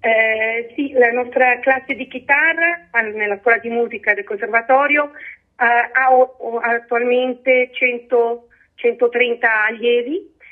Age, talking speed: 40-59, 125 wpm